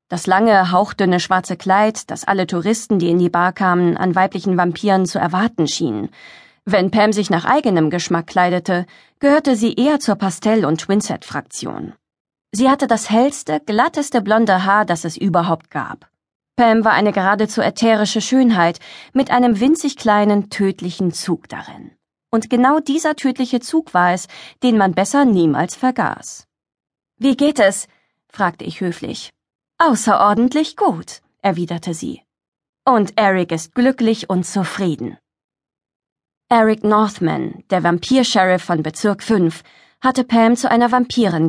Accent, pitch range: German, 180-240 Hz